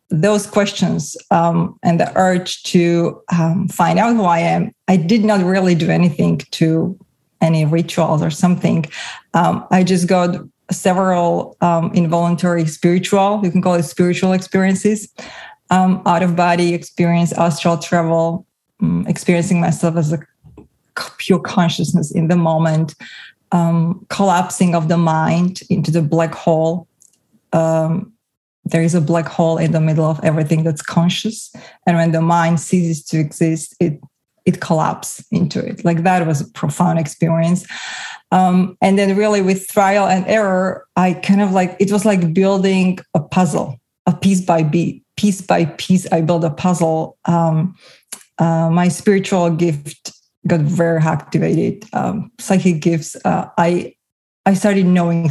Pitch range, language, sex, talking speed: 165-185 Hz, English, female, 150 wpm